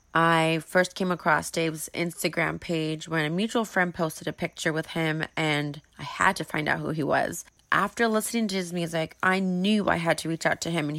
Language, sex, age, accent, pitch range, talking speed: English, female, 30-49, American, 165-195 Hz, 220 wpm